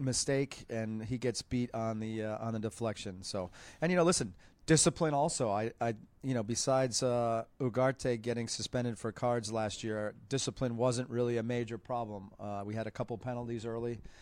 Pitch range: 110-125 Hz